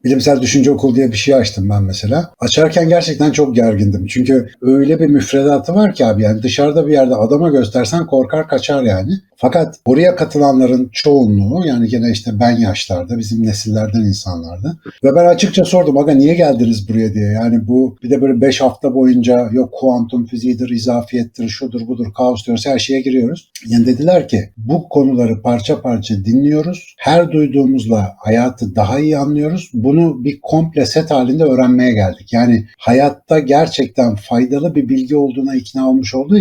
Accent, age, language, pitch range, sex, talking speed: native, 60-79, Turkish, 115-145 Hz, male, 165 wpm